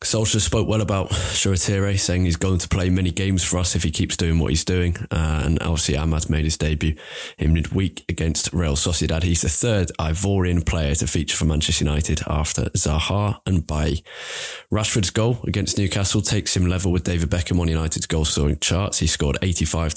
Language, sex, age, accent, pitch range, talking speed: English, male, 20-39, British, 80-95 Hz, 195 wpm